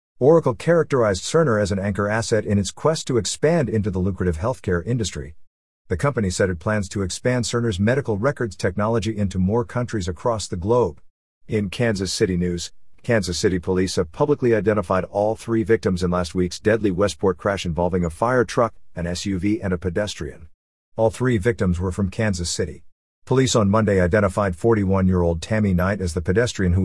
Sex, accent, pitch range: male, American, 90-120 Hz